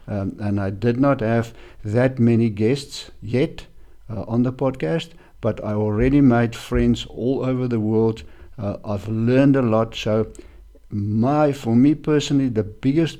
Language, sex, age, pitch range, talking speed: English, male, 60-79, 105-130 Hz, 160 wpm